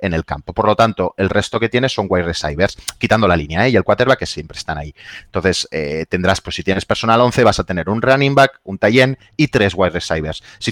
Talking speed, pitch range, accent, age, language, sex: 250 wpm, 100-140 Hz, Spanish, 30-49, Spanish, male